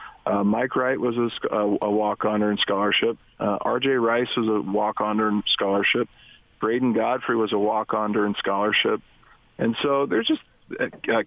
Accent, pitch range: American, 105-125 Hz